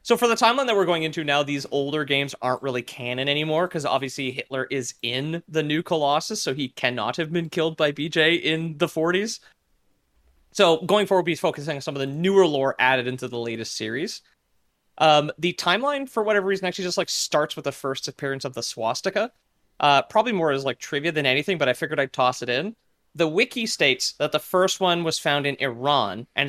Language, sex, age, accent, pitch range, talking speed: English, male, 30-49, American, 135-170 Hz, 215 wpm